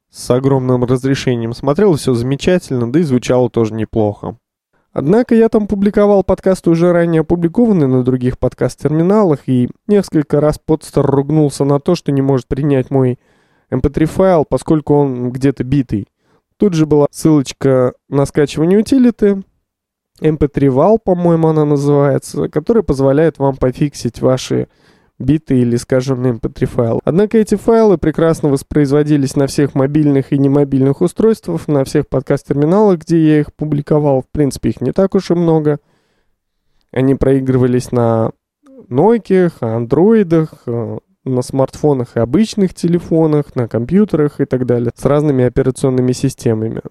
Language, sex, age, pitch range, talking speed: Russian, male, 20-39, 130-170 Hz, 135 wpm